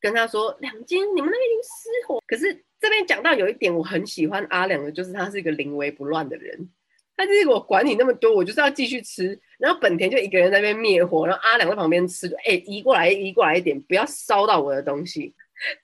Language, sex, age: Chinese, female, 20-39